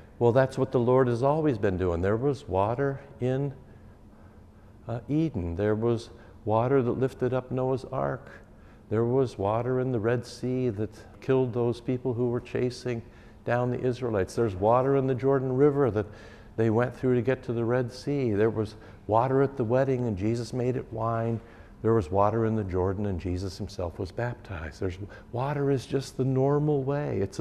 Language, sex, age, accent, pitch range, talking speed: English, male, 60-79, American, 100-125 Hz, 190 wpm